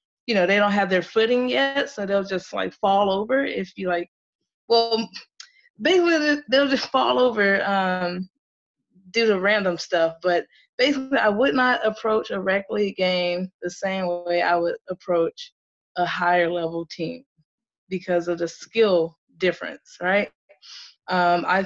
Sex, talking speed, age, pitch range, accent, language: female, 155 wpm, 20-39, 180-220 Hz, American, English